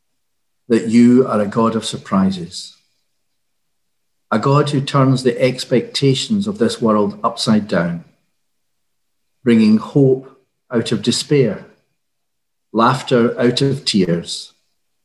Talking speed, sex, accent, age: 110 wpm, male, British, 50-69